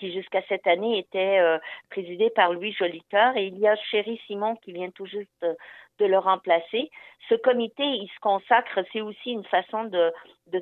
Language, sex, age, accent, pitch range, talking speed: French, female, 50-69, French, 180-215 Hz, 200 wpm